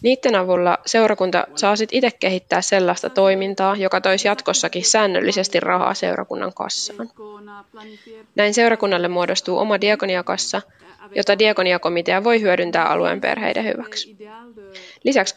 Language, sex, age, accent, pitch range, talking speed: Finnish, female, 20-39, native, 185-235 Hz, 115 wpm